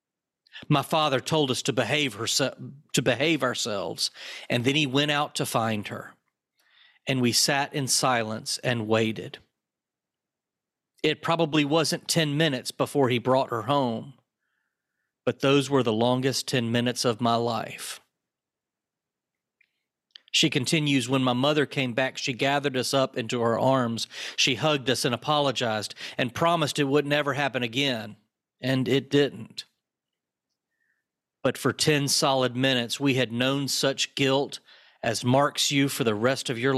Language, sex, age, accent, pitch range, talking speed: English, male, 40-59, American, 125-145 Hz, 150 wpm